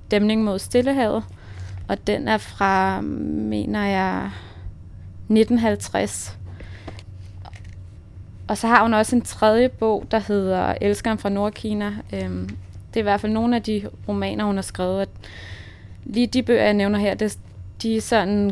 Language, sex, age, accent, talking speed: Danish, female, 20-39, native, 140 wpm